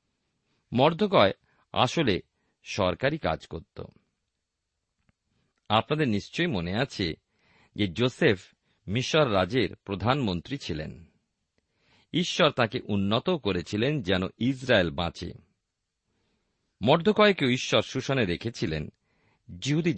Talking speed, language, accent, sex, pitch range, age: 80 wpm, Bengali, native, male, 90-135 Hz, 50-69